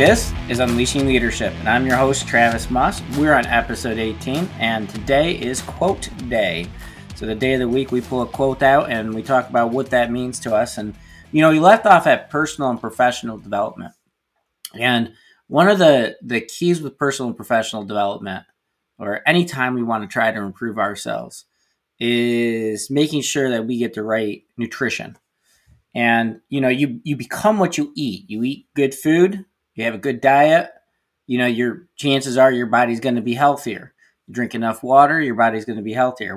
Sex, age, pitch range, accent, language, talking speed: male, 20-39, 115-140 Hz, American, English, 195 wpm